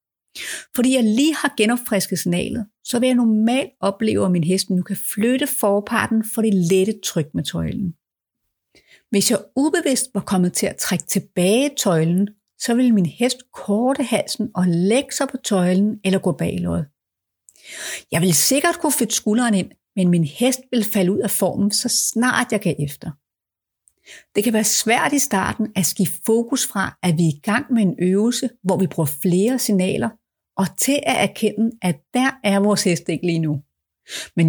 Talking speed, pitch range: 180 wpm, 180-235 Hz